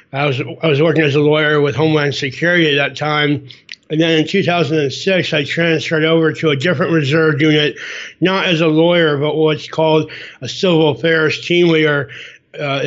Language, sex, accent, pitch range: English, male, American, 145-160 Hz